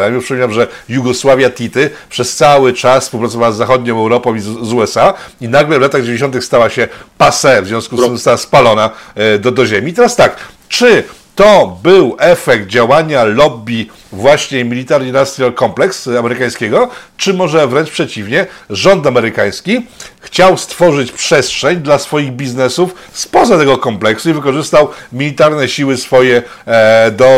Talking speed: 145 wpm